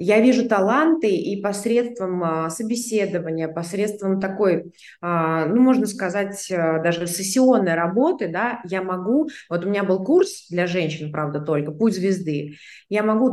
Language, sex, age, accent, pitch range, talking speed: Russian, female, 20-39, native, 175-220 Hz, 135 wpm